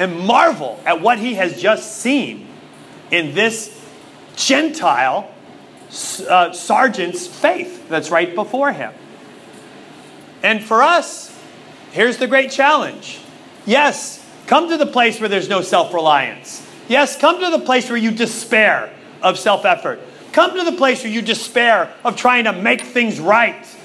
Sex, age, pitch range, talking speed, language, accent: male, 30-49, 210-280 Hz, 145 wpm, English, American